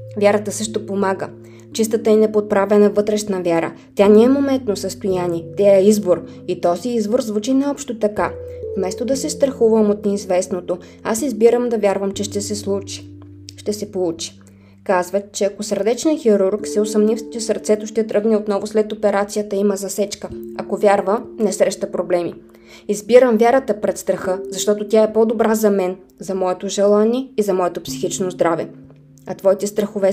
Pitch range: 180-220 Hz